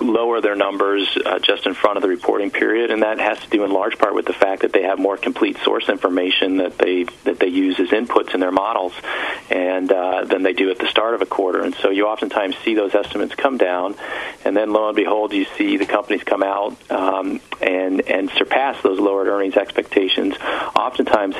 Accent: American